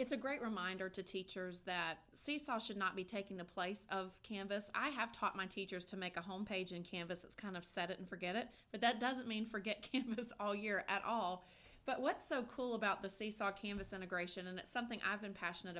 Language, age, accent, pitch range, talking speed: English, 30-49, American, 185-235 Hz, 230 wpm